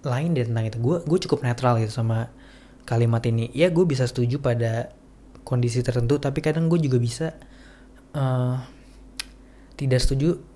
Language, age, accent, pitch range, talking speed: Indonesian, 20-39, native, 120-140 Hz, 155 wpm